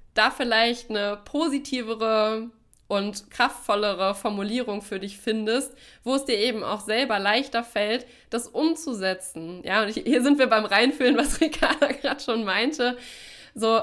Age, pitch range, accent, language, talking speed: 20-39, 215-255 Hz, German, German, 145 wpm